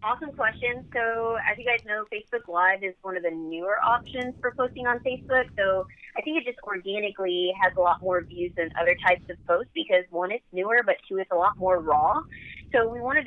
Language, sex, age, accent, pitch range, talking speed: English, female, 30-49, American, 180-230 Hz, 220 wpm